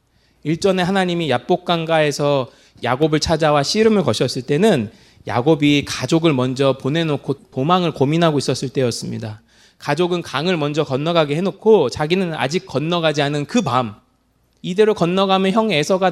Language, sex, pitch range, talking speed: English, male, 145-215 Hz, 110 wpm